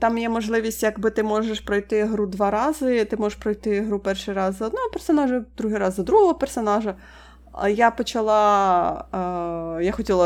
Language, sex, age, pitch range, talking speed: Ukrainian, female, 30-49, 190-235 Hz, 165 wpm